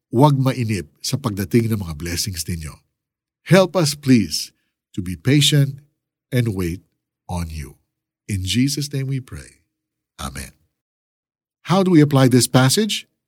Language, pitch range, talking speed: Filipino, 105-155 Hz, 135 wpm